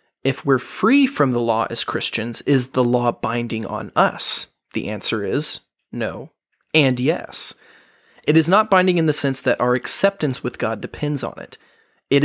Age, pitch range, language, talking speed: 20-39, 120-145 Hz, English, 175 wpm